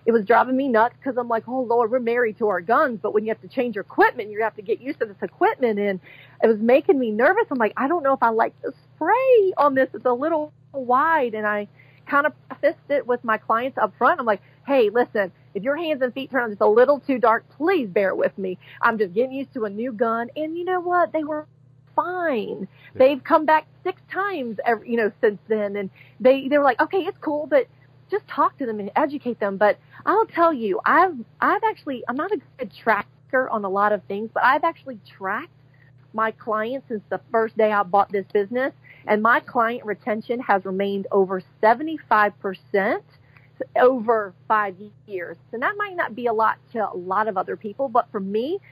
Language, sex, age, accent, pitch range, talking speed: English, female, 40-59, American, 205-280 Hz, 225 wpm